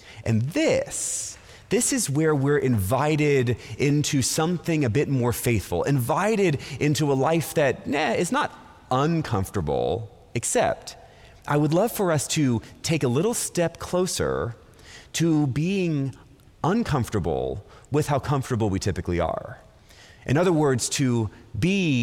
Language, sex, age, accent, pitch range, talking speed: English, male, 30-49, American, 115-160 Hz, 130 wpm